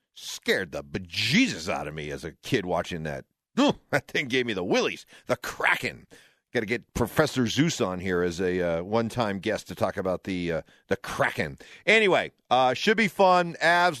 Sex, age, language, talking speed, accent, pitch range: male, 50-69, English, 195 wpm, American, 110-170 Hz